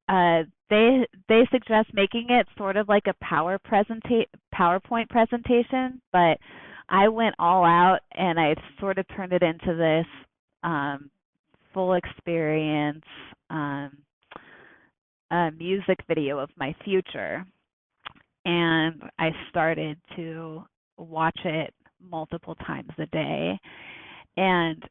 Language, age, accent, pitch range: English, 30-49, American, 160-190 Hz